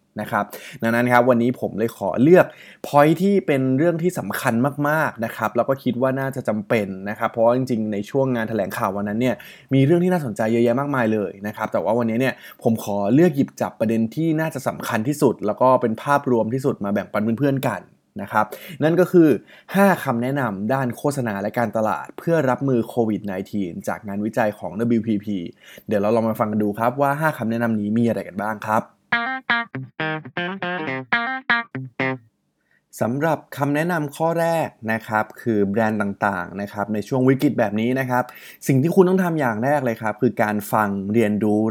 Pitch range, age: 110-140 Hz, 20-39